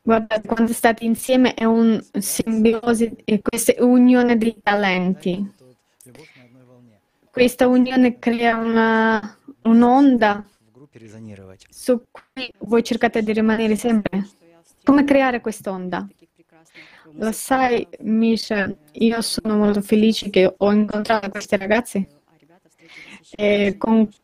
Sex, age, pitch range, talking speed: female, 20-39, 195-235 Hz, 100 wpm